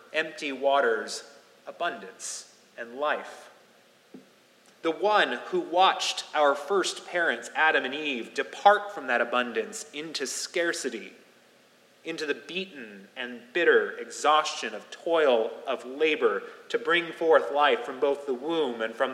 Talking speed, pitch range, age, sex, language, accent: 130 wpm, 135-205 Hz, 30-49, male, English, American